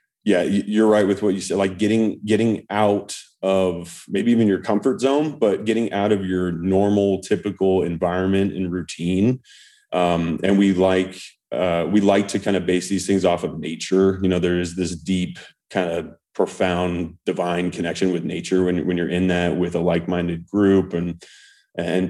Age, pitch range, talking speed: 30-49, 85-100 Hz, 180 wpm